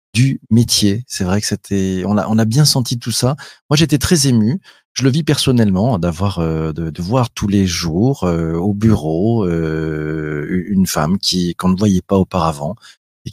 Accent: French